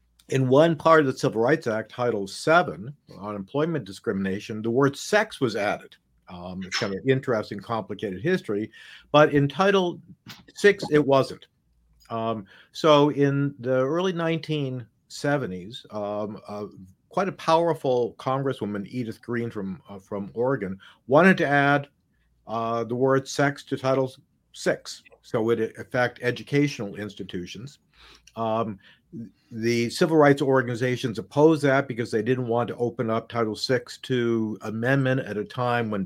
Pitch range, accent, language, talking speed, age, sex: 115-145 Hz, American, English, 145 wpm, 50-69, male